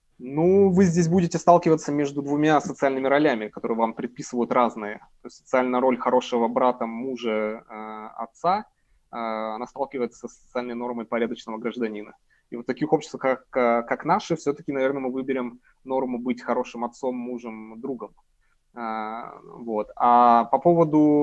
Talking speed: 150 wpm